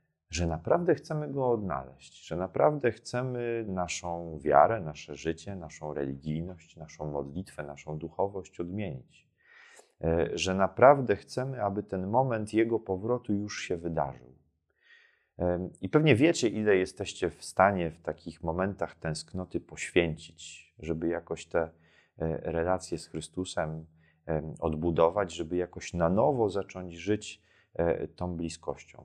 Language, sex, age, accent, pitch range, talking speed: Polish, male, 30-49, native, 80-100 Hz, 120 wpm